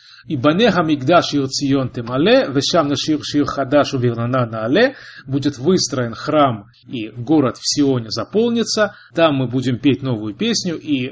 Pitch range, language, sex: 130-165 Hz, Russian, male